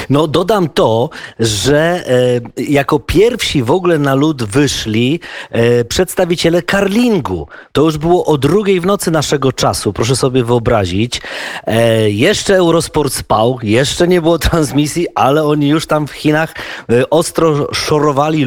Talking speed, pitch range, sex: 145 wpm, 125-170 Hz, male